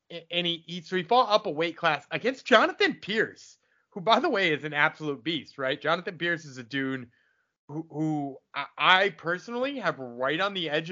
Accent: American